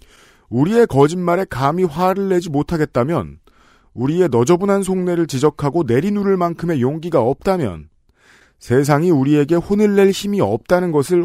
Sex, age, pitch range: male, 40-59, 115-175 Hz